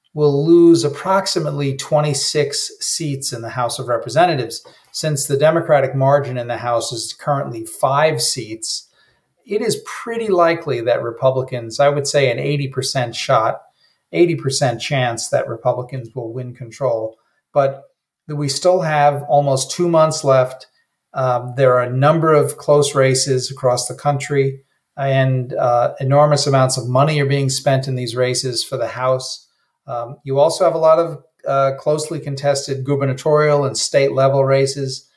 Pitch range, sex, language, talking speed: 125-150 Hz, male, English, 150 wpm